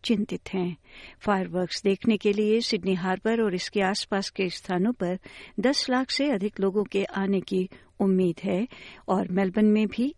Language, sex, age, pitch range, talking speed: Hindi, female, 60-79, 190-230 Hz, 165 wpm